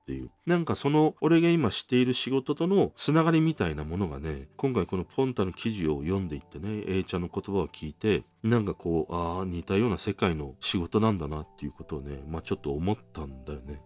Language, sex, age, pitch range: Japanese, male, 40-59, 80-130 Hz